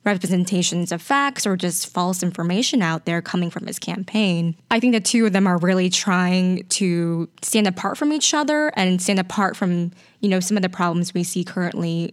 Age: 10-29